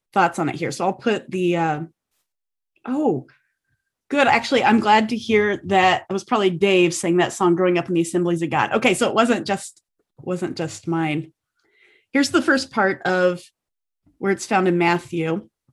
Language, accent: English, American